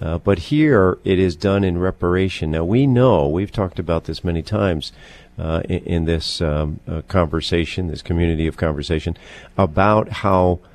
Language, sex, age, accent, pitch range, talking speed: English, male, 50-69, American, 80-105 Hz, 170 wpm